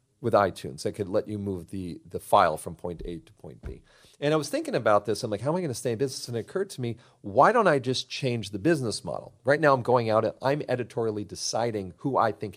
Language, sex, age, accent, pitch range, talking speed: English, male, 40-59, American, 105-130 Hz, 275 wpm